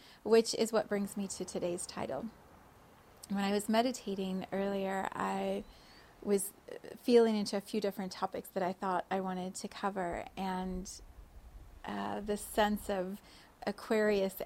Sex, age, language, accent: female, 30-49, English, American